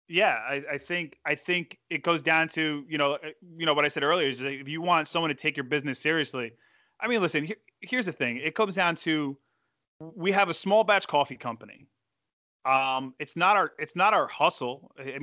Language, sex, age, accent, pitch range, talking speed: English, male, 30-49, American, 150-185 Hz, 215 wpm